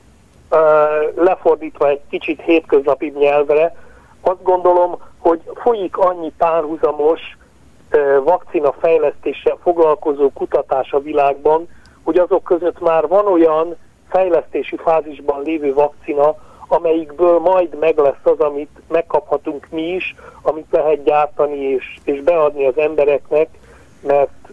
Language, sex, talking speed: Hungarian, male, 110 wpm